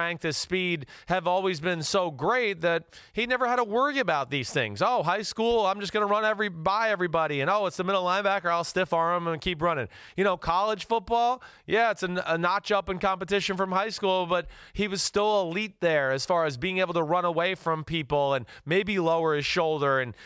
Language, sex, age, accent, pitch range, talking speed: English, male, 30-49, American, 150-190 Hz, 220 wpm